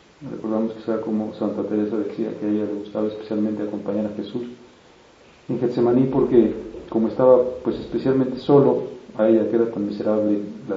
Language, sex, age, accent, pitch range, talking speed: Spanish, male, 40-59, Mexican, 105-115 Hz, 175 wpm